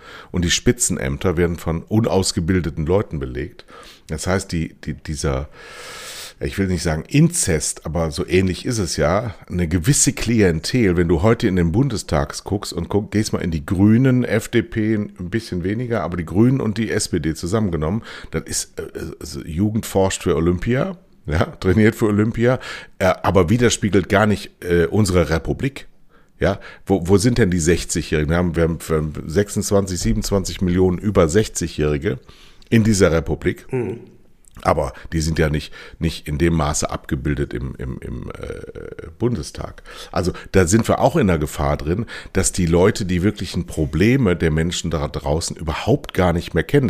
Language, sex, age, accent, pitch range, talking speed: German, male, 60-79, German, 80-110 Hz, 155 wpm